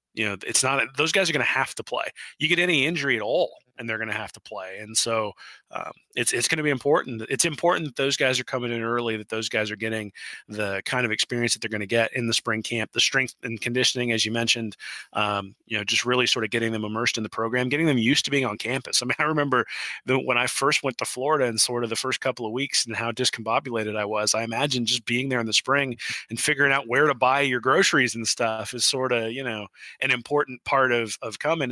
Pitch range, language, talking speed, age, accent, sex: 115-130 Hz, English, 265 wpm, 20-39, American, male